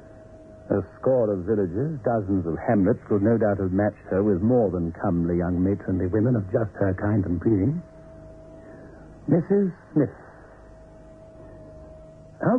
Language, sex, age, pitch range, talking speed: English, male, 60-79, 95-135 Hz, 140 wpm